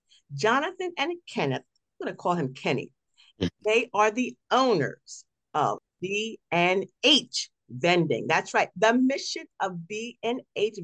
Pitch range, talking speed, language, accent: 165-225 Hz, 120 wpm, English, American